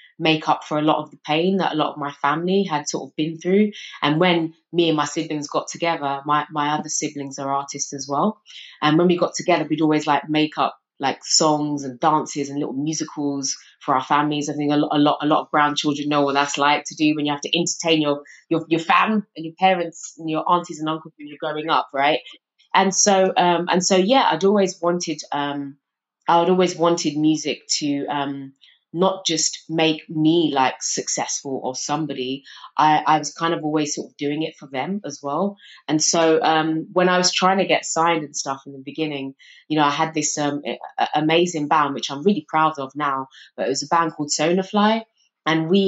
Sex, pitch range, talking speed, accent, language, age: female, 145-165 Hz, 225 wpm, British, English, 20-39